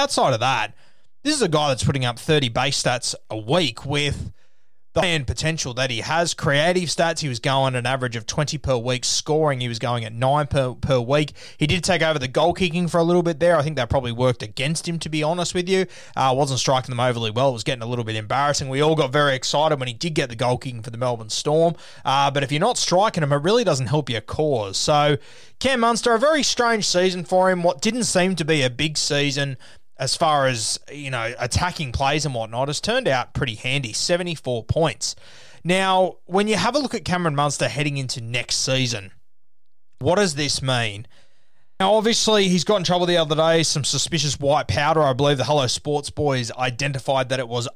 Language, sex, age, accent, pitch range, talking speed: English, male, 20-39, Australian, 125-165 Hz, 225 wpm